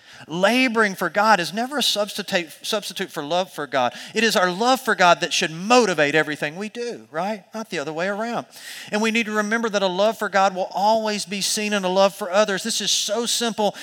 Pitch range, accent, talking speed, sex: 170-215 Hz, American, 225 wpm, male